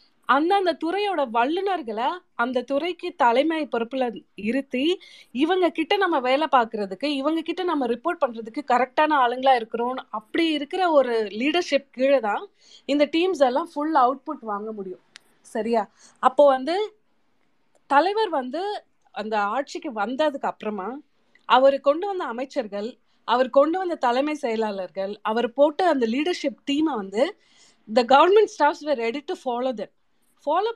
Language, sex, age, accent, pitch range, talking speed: Tamil, female, 30-49, native, 230-310 Hz, 130 wpm